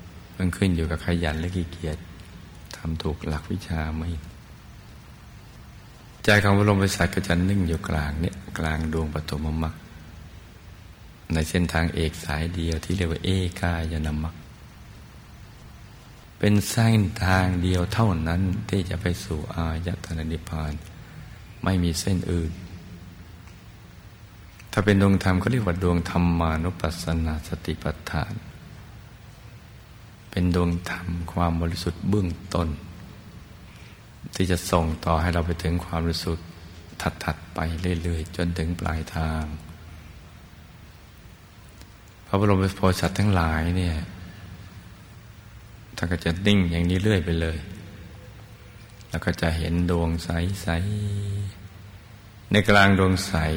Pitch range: 80-95 Hz